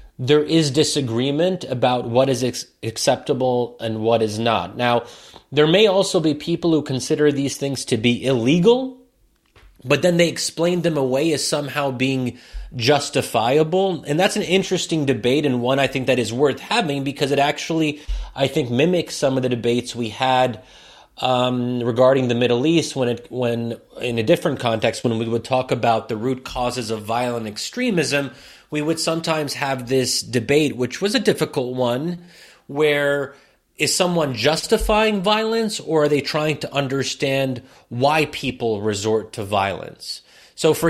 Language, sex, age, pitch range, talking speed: English, male, 30-49, 115-150 Hz, 165 wpm